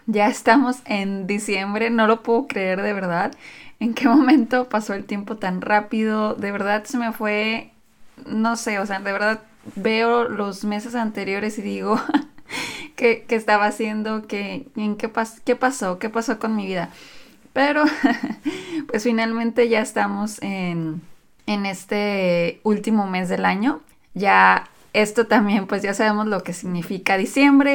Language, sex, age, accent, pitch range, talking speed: Spanish, female, 20-39, Mexican, 195-230 Hz, 145 wpm